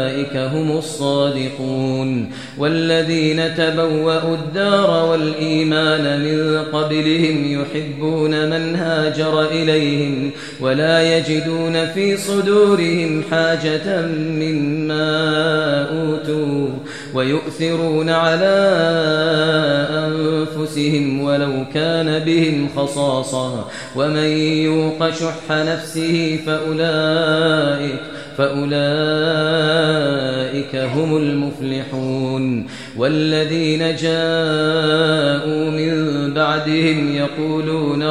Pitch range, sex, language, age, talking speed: 145-160 Hz, male, Arabic, 30-49, 60 wpm